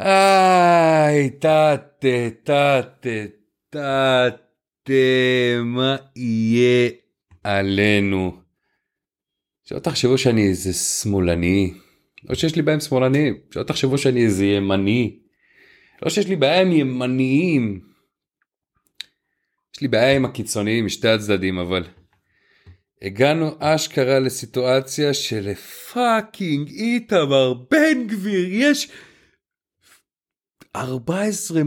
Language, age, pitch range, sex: Hebrew, 40-59, 120-185 Hz, male